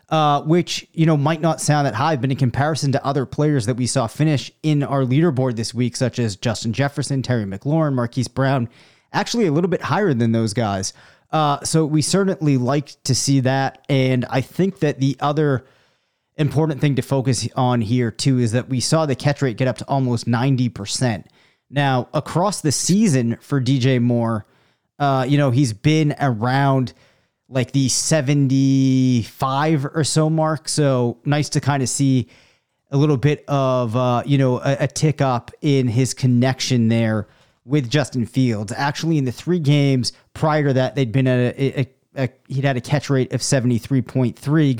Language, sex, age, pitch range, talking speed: English, male, 30-49, 125-145 Hz, 185 wpm